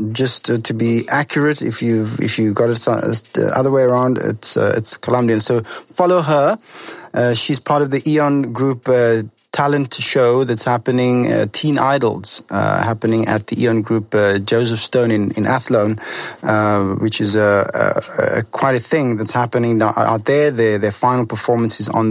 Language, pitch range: English, 115-140 Hz